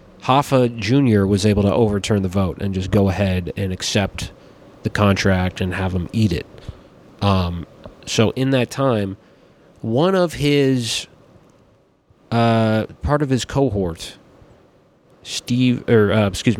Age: 30-49